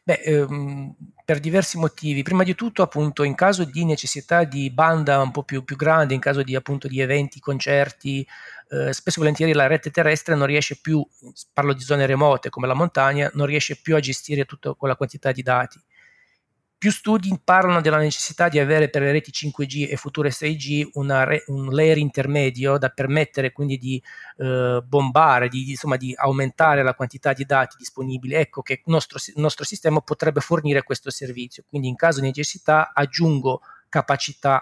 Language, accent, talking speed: Italian, native, 185 wpm